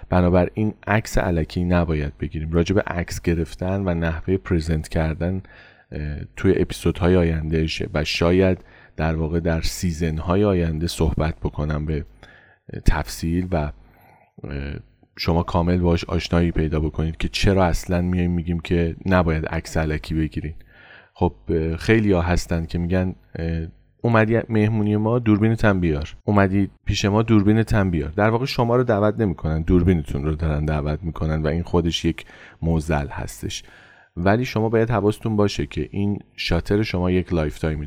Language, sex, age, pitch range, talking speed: Persian, male, 30-49, 80-105 Hz, 145 wpm